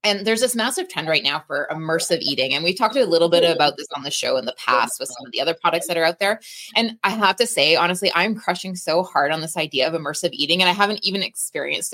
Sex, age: female, 20-39